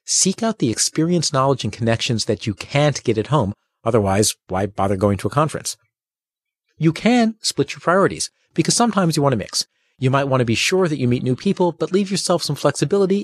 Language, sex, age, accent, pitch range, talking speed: English, male, 40-59, American, 105-165 Hz, 215 wpm